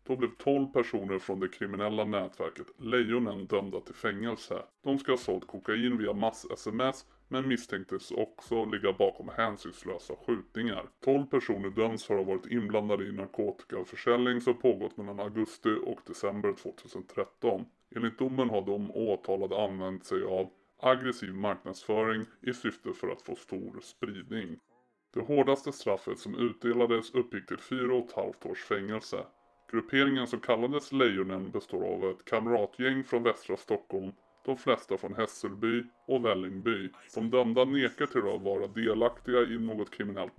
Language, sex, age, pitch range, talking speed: Swedish, female, 30-49, 105-125 Hz, 145 wpm